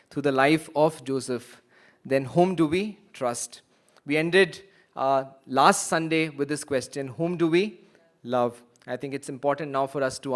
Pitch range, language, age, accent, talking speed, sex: 140-175 Hz, English, 20-39, Indian, 175 wpm, male